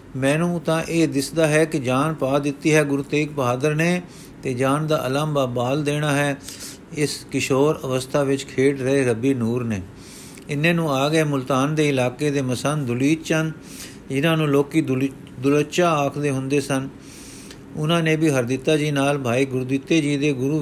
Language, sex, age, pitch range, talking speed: Punjabi, male, 50-69, 135-155 Hz, 170 wpm